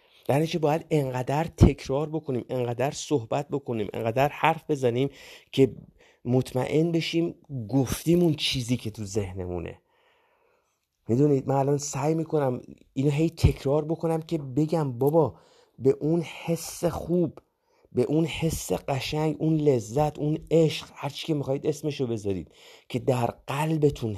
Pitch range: 115-150 Hz